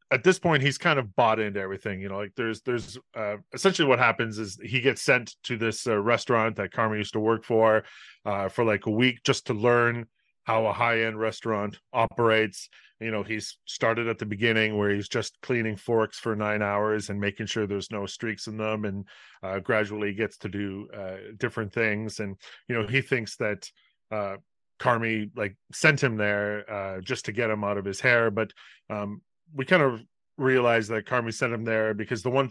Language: English